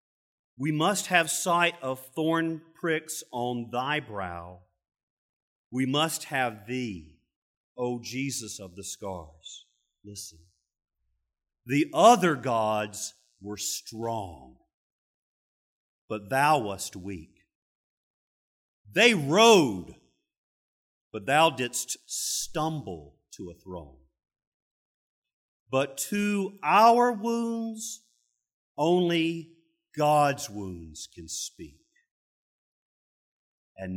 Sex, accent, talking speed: male, American, 85 wpm